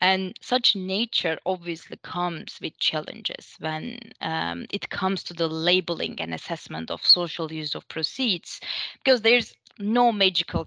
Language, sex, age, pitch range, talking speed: English, female, 20-39, 170-220 Hz, 140 wpm